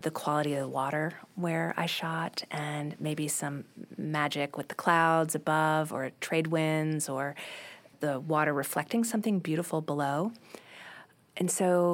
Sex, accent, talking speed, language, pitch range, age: female, American, 140 wpm, English, 145-170 Hz, 30-49